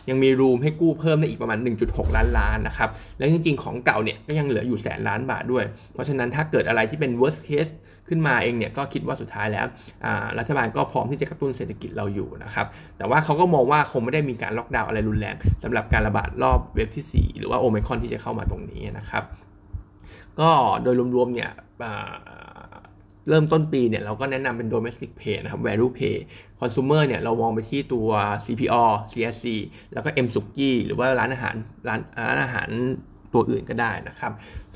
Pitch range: 110-135 Hz